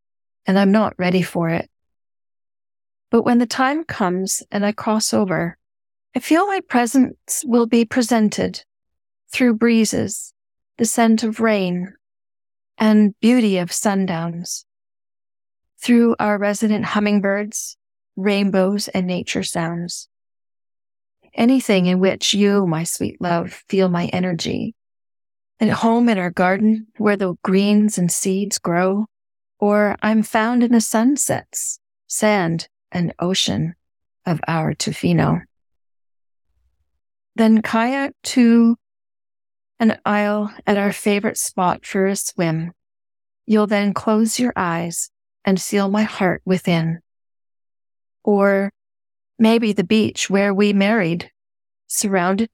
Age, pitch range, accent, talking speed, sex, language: 40-59, 185-230 Hz, American, 120 wpm, female, English